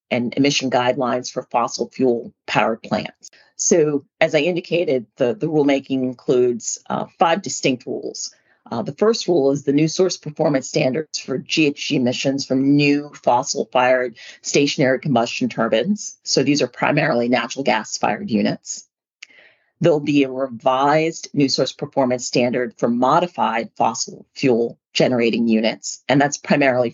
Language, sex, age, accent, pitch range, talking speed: English, female, 40-59, American, 125-150 Hz, 145 wpm